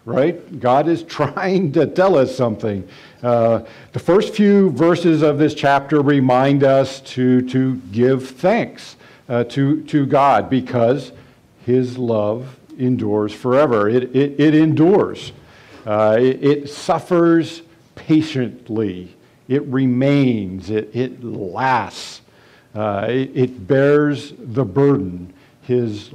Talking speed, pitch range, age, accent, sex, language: 120 wpm, 125-150 Hz, 50-69, American, male, English